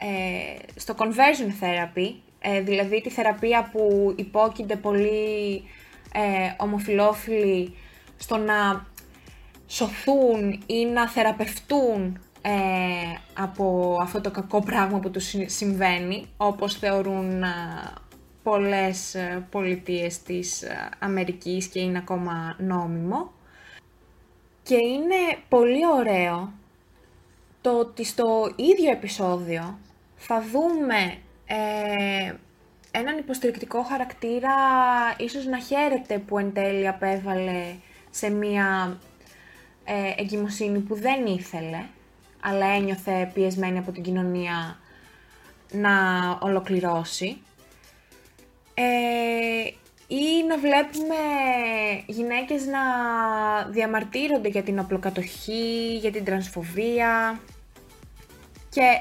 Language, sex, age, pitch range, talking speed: Greek, female, 20-39, 190-235 Hz, 85 wpm